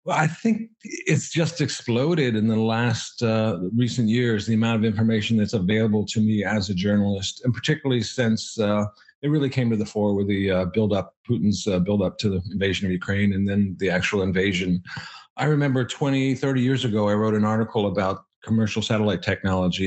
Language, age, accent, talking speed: English, 50-69, American, 195 wpm